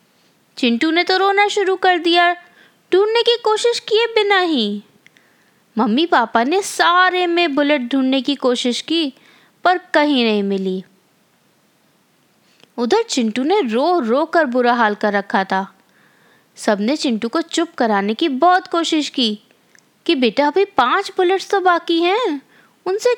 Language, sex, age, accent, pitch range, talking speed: Hindi, female, 20-39, native, 240-360 Hz, 145 wpm